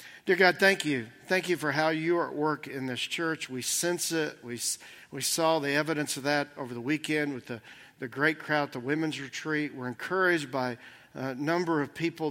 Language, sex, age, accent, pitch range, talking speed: English, male, 50-69, American, 135-170 Hz, 210 wpm